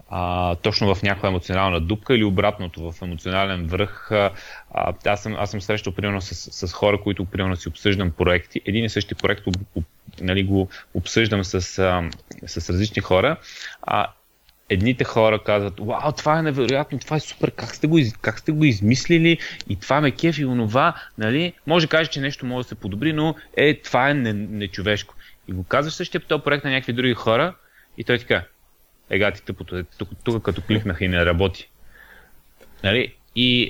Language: Bulgarian